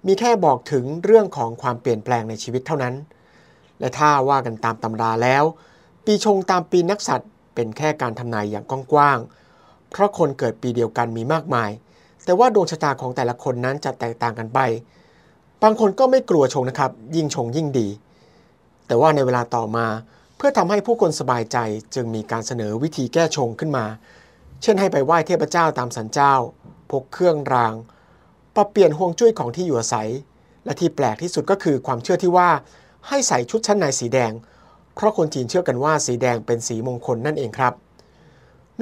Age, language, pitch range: 60-79, Thai, 120-165 Hz